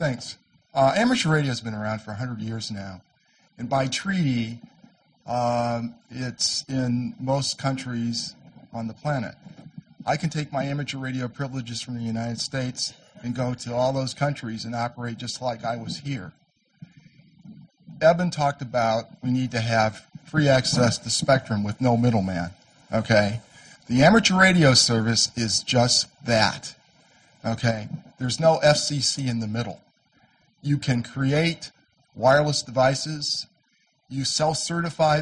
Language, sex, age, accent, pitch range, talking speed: English, male, 50-69, American, 115-150 Hz, 140 wpm